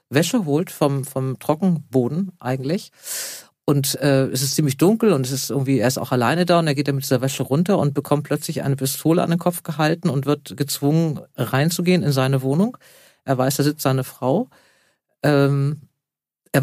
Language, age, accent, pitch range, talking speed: German, 50-69, German, 135-170 Hz, 190 wpm